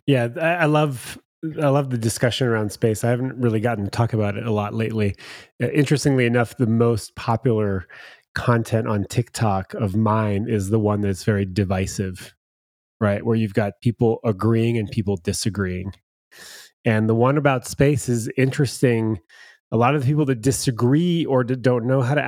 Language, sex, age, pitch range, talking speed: English, male, 30-49, 100-125 Hz, 170 wpm